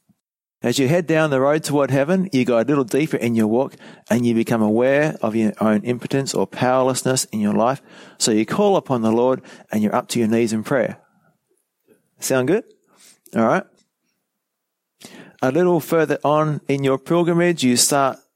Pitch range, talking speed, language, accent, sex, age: 110-145 Hz, 185 wpm, English, Australian, male, 40-59